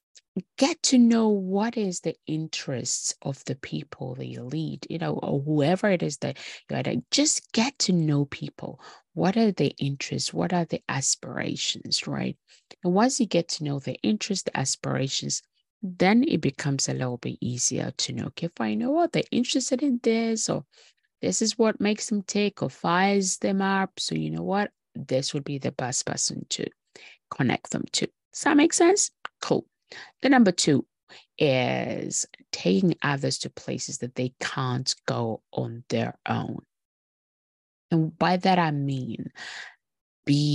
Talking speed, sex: 170 wpm, female